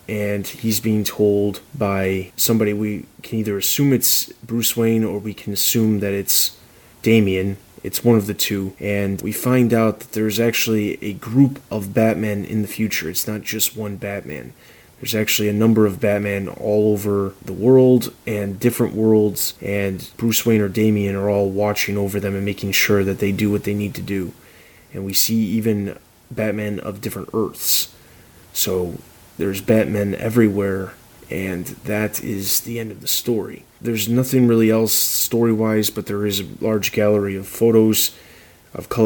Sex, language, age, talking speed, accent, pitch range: male, English, 20-39, 170 wpm, American, 100-110 Hz